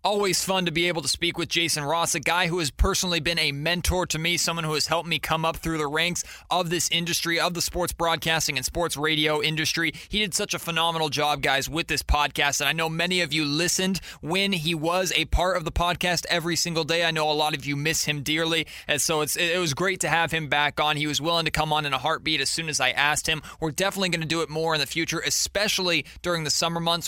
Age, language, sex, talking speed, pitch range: 20-39, English, male, 260 wpm, 145-170 Hz